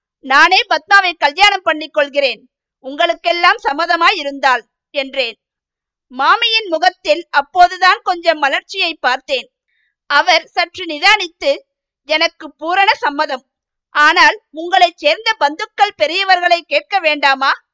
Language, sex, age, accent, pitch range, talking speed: Tamil, female, 50-69, native, 285-360 Hz, 80 wpm